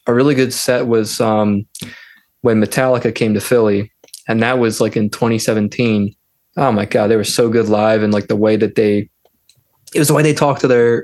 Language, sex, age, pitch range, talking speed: English, male, 20-39, 110-130 Hz, 210 wpm